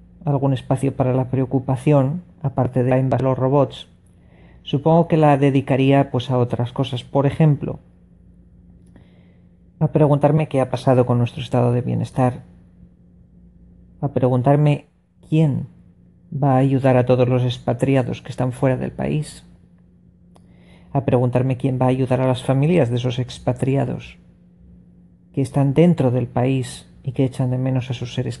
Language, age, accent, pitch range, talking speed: English, 40-59, Spanish, 90-140 Hz, 150 wpm